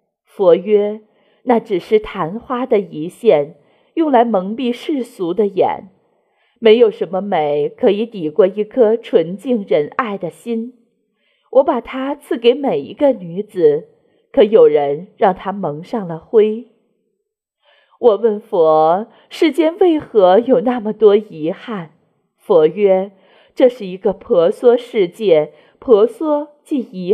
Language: Chinese